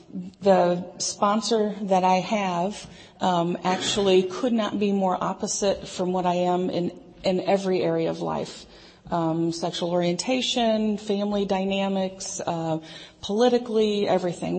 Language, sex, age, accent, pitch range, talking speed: English, female, 40-59, American, 180-200 Hz, 125 wpm